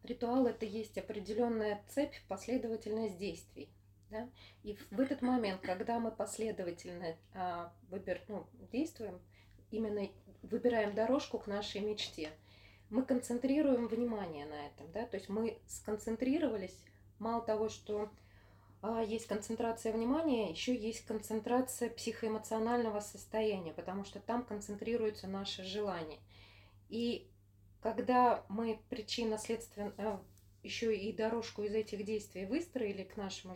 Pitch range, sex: 195-240 Hz, female